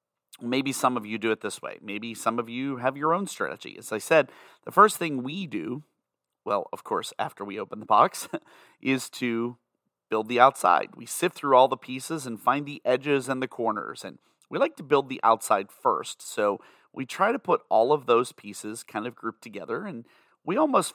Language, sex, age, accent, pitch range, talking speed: English, male, 30-49, American, 105-140 Hz, 210 wpm